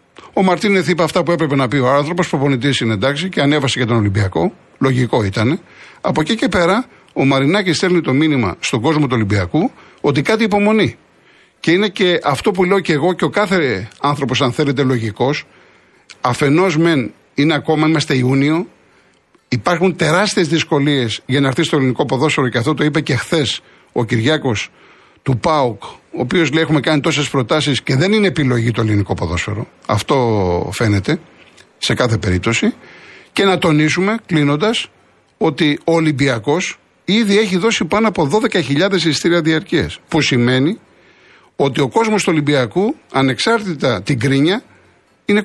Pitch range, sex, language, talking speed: 130-180 Hz, male, Greek, 160 wpm